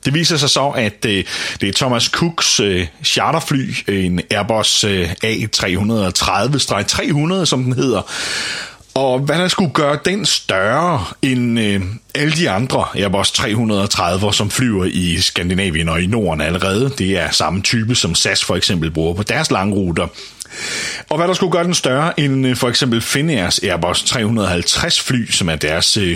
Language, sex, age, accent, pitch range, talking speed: Danish, male, 30-49, native, 95-130 Hz, 150 wpm